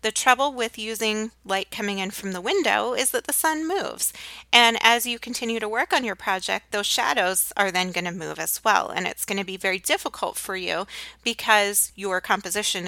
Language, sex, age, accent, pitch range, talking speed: English, female, 30-49, American, 190-235 Hz, 210 wpm